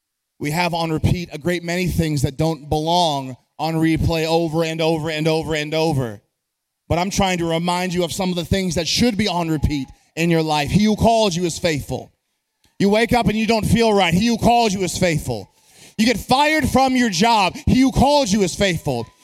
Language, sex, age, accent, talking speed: English, male, 30-49, American, 220 wpm